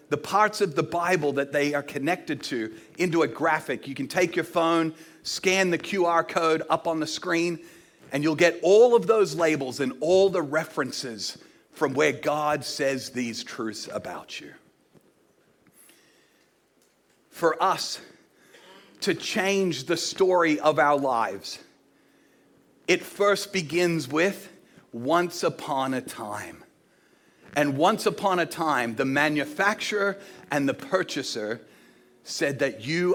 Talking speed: 135 wpm